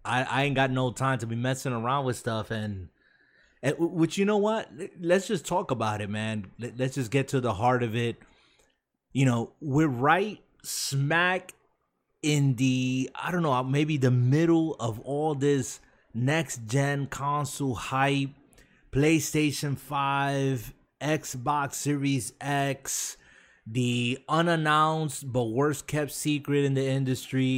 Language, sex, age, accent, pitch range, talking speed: English, male, 30-49, American, 125-155 Hz, 145 wpm